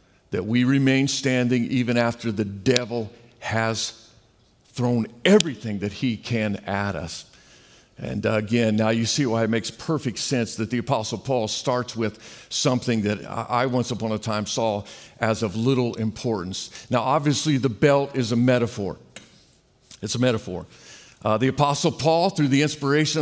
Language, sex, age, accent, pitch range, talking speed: English, male, 50-69, American, 120-165 Hz, 160 wpm